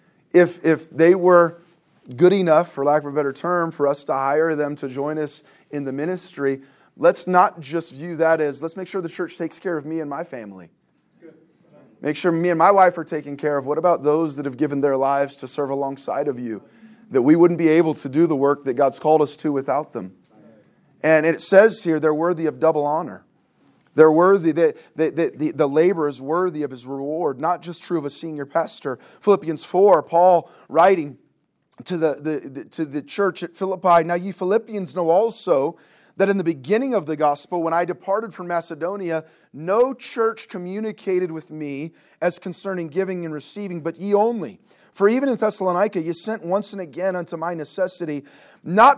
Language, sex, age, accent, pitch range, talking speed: English, male, 20-39, American, 155-185 Hz, 200 wpm